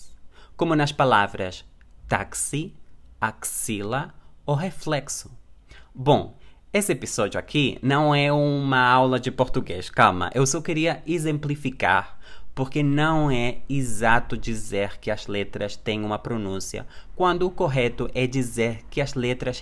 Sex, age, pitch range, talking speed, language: male, 20-39, 100-145 Hz, 125 wpm, Portuguese